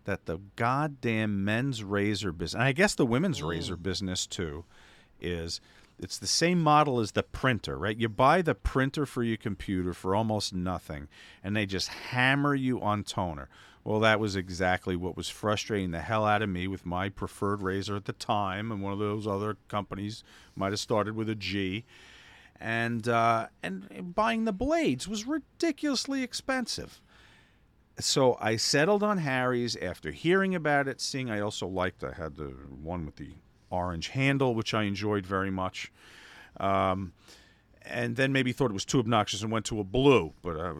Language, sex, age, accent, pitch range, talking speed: English, male, 50-69, American, 95-120 Hz, 180 wpm